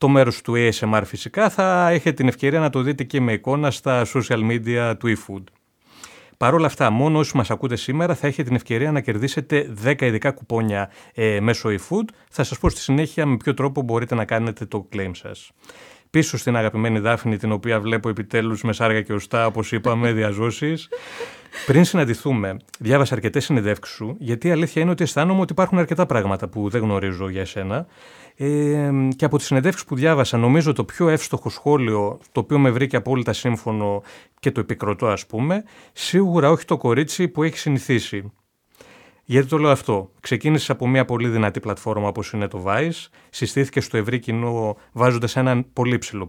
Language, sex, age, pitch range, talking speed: Greek, male, 30-49, 110-155 Hz, 185 wpm